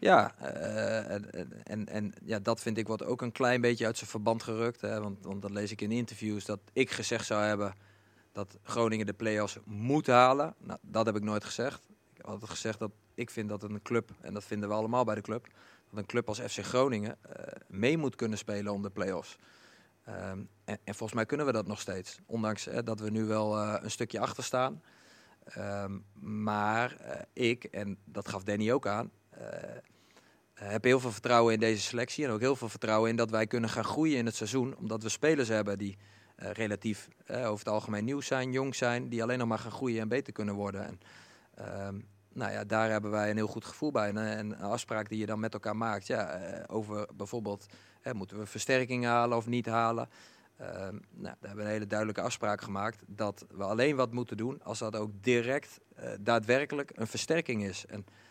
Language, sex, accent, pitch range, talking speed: Dutch, male, Dutch, 105-120 Hz, 210 wpm